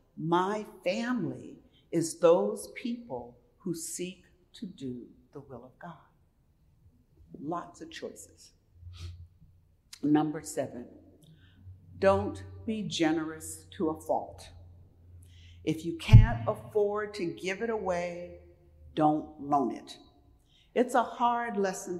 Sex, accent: female, American